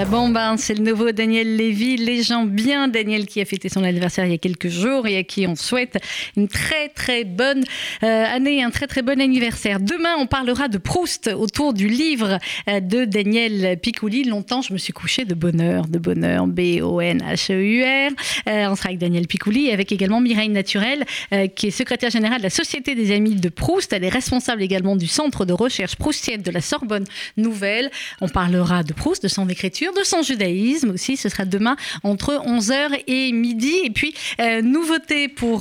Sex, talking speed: female, 200 wpm